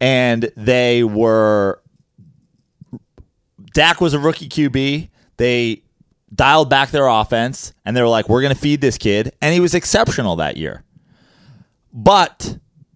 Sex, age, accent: male, 30-49, American